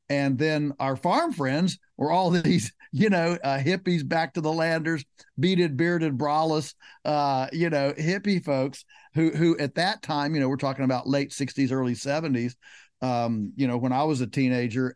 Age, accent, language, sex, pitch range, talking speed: 50-69, American, English, male, 125-155 Hz, 185 wpm